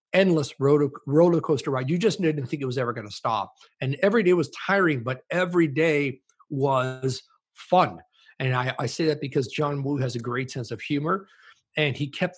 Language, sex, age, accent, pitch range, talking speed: English, male, 50-69, American, 130-160 Hz, 200 wpm